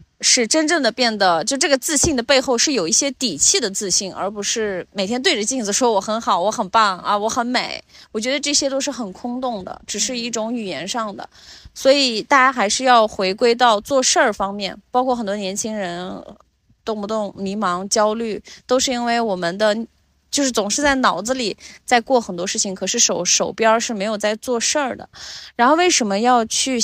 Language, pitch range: Chinese, 200-255 Hz